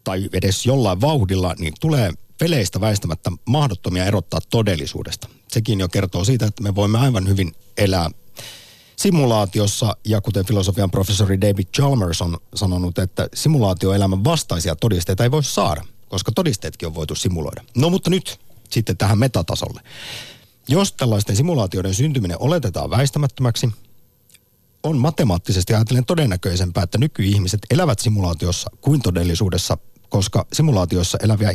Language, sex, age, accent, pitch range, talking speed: Finnish, male, 50-69, native, 95-125 Hz, 125 wpm